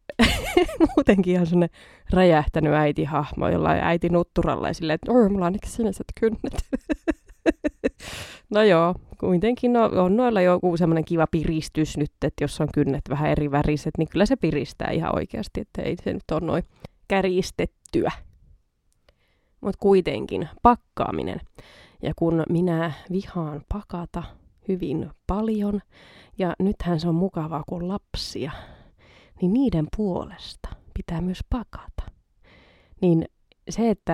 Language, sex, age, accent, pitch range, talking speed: Finnish, female, 20-39, native, 155-195 Hz, 130 wpm